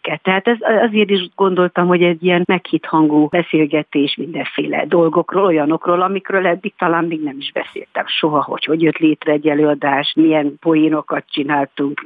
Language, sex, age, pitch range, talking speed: Hungarian, female, 50-69, 150-190 Hz, 150 wpm